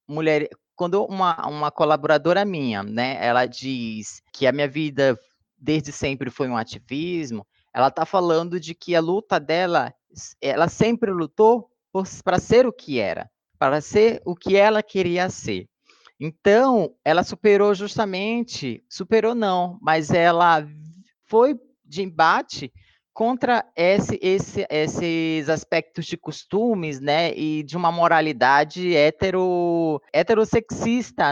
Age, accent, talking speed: 20-39, Brazilian, 115 wpm